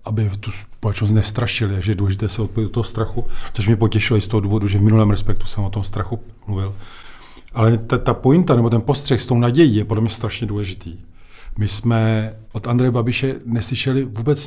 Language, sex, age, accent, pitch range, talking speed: Czech, male, 40-59, native, 105-125 Hz, 205 wpm